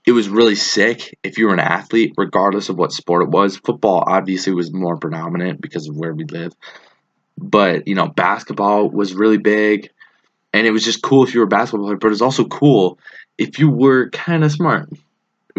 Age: 20-39